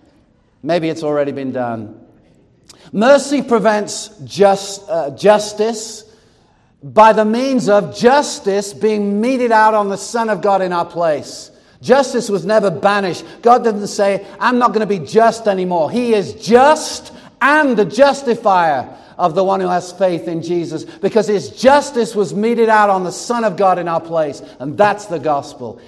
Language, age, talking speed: English, 50-69, 165 wpm